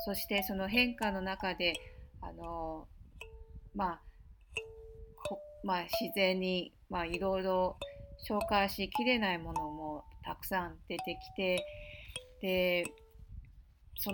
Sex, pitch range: female, 175-225 Hz